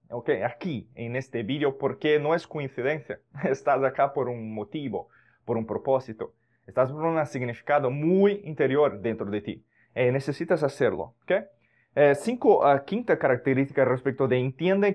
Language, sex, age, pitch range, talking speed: Spanish, male, 20-39, 120-150 Hz, 155 wpm